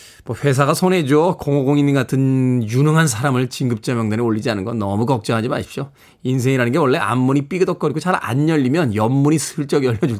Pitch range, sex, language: 130-175 Hz, male, Korean